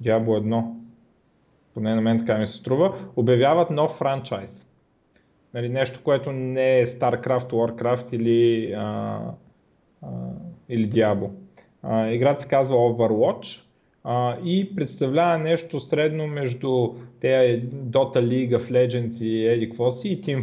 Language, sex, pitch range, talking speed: Bulgarian, male, 120-155 Hz, 115 wpm